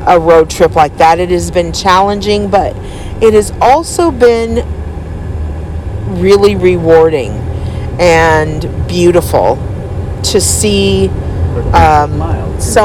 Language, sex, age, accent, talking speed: English, female, 40-59, American, 105 wpm